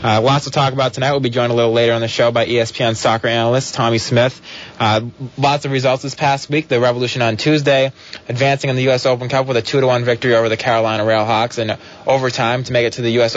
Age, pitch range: 20-39, 120-145 Hz